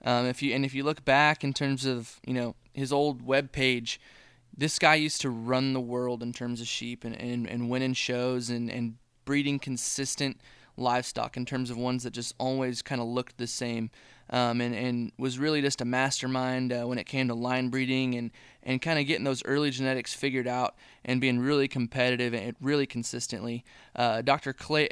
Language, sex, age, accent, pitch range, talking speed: English, male, 20-39, American, 125-140 Hz, 205 wpm